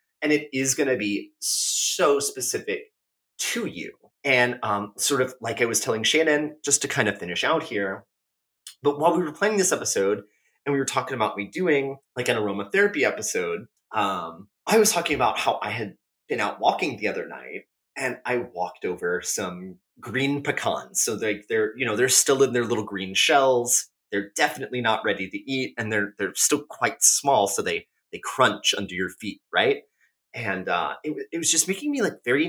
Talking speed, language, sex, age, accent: 200 wpm, English, male, 30-49, American